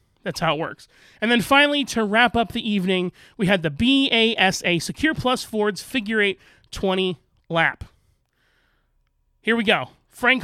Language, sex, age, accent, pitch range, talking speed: English, male, 30-49, American, 170-215 Hz, 155 wpm